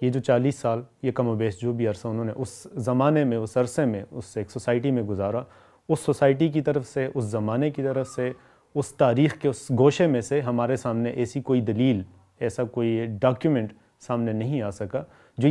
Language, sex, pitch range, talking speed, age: Urdu, male, 115-140 Hz, 210 wpm, 30-49